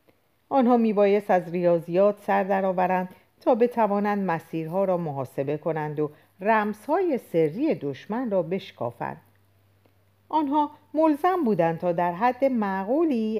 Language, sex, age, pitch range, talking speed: Persian, female, 50-69, 140-235 Hz, 110 wpm